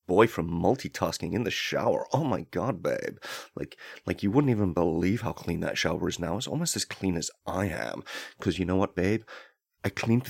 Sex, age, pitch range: male, 30-49, 90-115 Hz